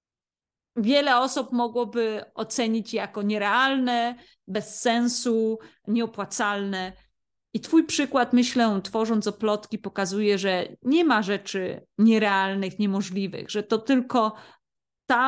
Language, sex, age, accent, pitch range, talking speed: Polish, female, 30-49, native, 200-235 Hz, 100 wpm